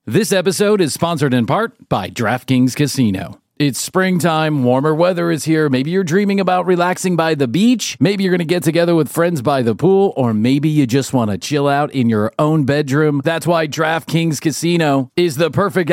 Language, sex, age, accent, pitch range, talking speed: English, male, 40-59, American, 135-175 Hz, 200 wpm